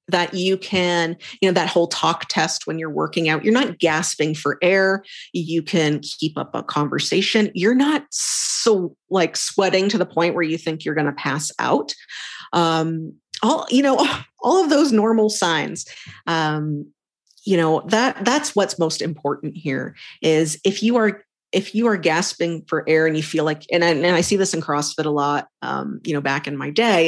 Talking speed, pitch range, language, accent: 195 wpm, 155-215 Hz, English, American